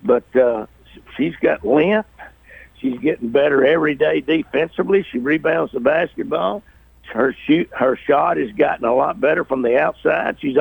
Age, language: 60-79, English